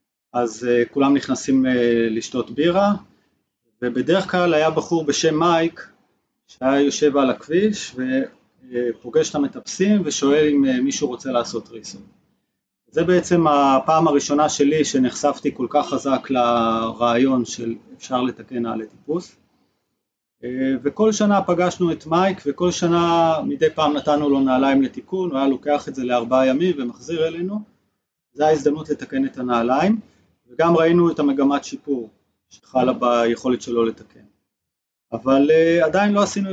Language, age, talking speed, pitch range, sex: Hebrew, 30-49, 130 wpm, 125-170 Hz, male